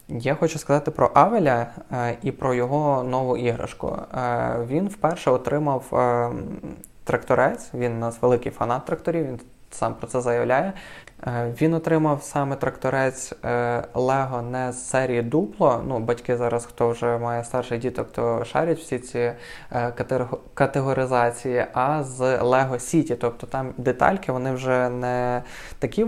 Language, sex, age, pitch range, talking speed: Ukrainian, male, 20-39, 120-145 Hz, 130 wpm